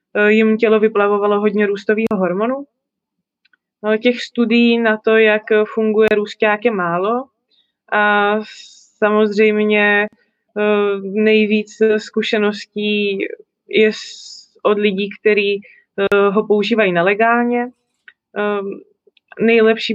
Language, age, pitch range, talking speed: Slovak, 20-39, 205-220 Hz, 85 wpm